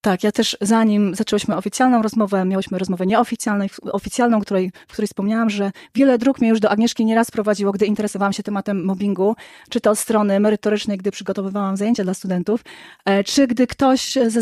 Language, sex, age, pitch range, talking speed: Polish, female, 20-39, 195-225 Hz, 165 wpm